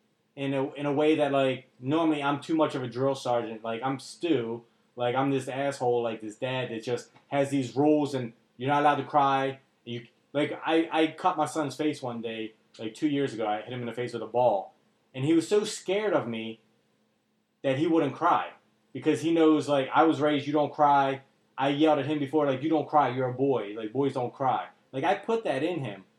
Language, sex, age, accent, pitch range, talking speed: English, male, 20-39, American, 130-160 Hz, 230 wpm